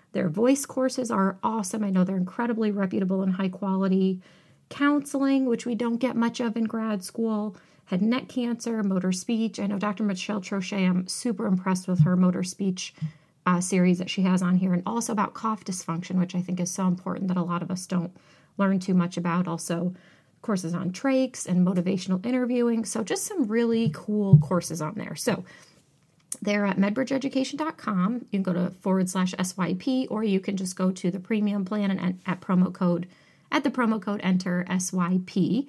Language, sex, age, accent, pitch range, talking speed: English, female, 30-49, American, 180-225 Hz, 195 wpm